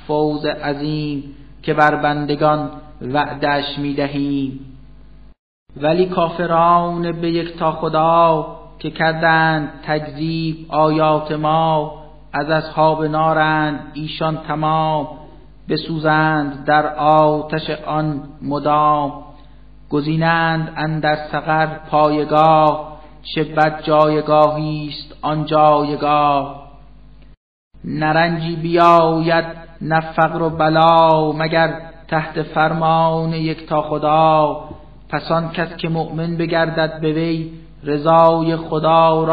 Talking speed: 90 wpm